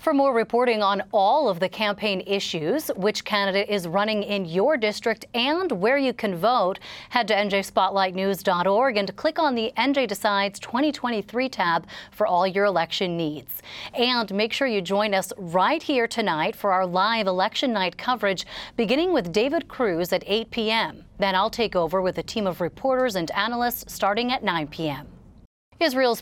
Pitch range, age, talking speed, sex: 180-225 Hz, 30-49, 170 wpm, female